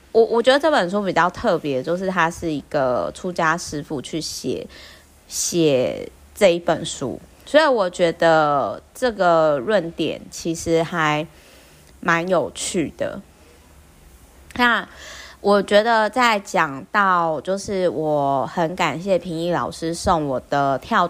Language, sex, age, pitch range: Chinese, female, 30-49, 155-200 Hz